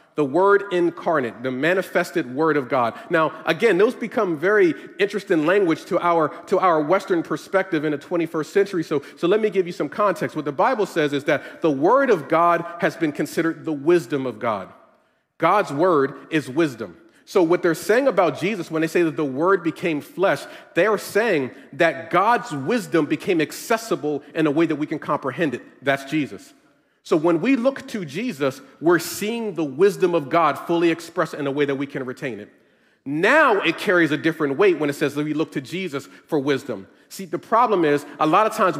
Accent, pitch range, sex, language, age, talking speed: American, 155-195 Hz, male, English, 40-59, 205 wpm